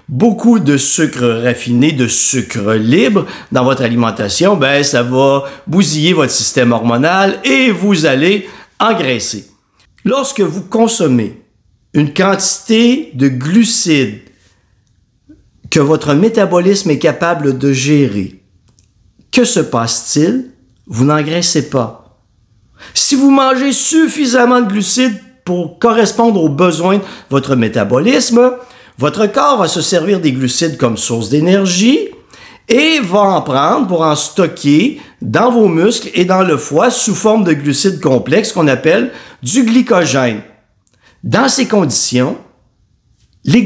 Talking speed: 125 wpm